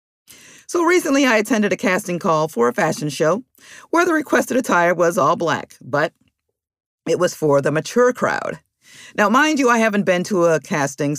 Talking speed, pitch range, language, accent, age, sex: 180 wpm, 140-225 Hz, English, American, 50-69, female